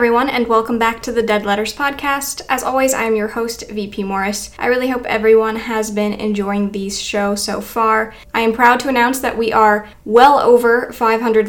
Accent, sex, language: American, female, English